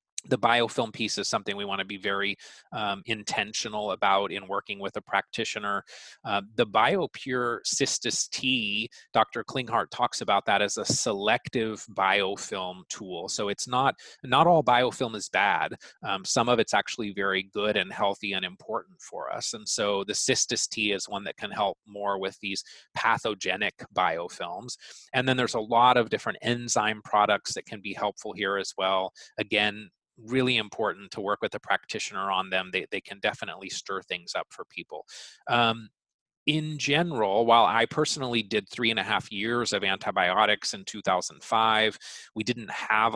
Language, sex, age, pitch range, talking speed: English, male, 30-49, 100-120 Hz, 170 wpm